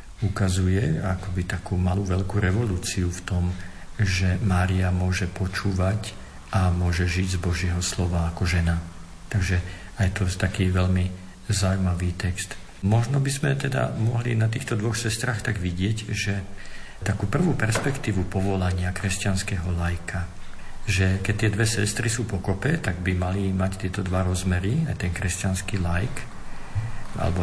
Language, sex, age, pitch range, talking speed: Slovak, male, 50-69, 90-110 Hz, 140 wpm